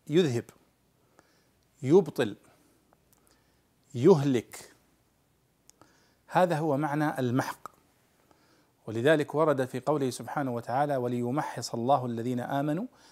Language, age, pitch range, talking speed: Arabic, 40-59, 125-155 Hz, 80 wpm